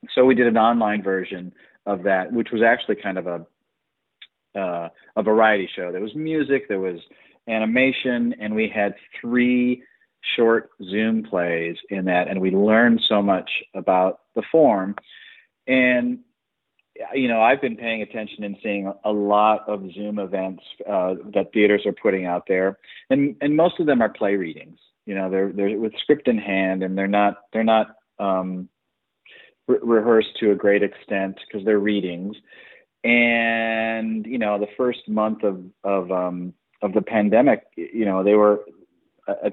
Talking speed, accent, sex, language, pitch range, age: 170 wpm, American, male, English, 95-115 Hz, 40-59